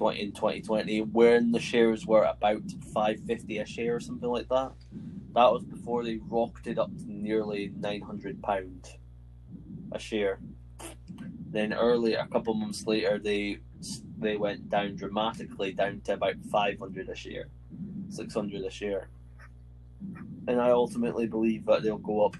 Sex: male